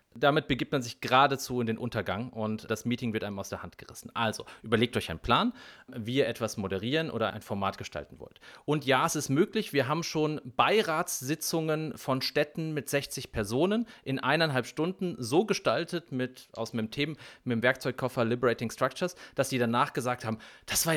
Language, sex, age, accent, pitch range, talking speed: German, male, 30-49, German, 115-155 Hz, 190 wpm